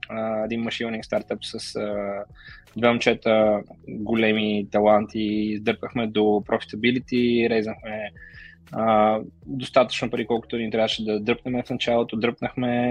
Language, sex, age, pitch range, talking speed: Bulgarian, male, 20-39, 105-120 Hz, 110 wpm